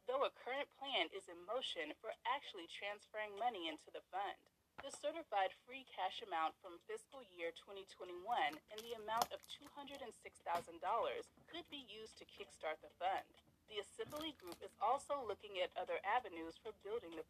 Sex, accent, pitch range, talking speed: female, American, 190-310 Hz, 165 wpm